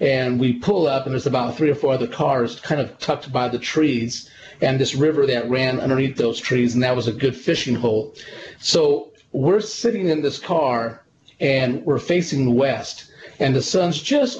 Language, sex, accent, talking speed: English, male, American, 195 wpm